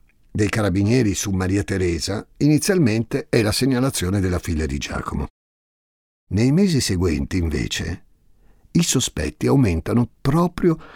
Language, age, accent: Italian, 50-69, native